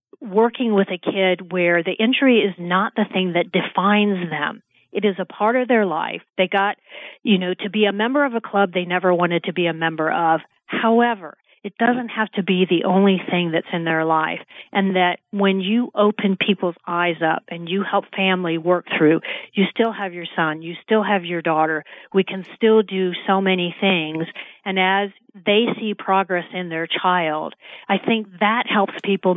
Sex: female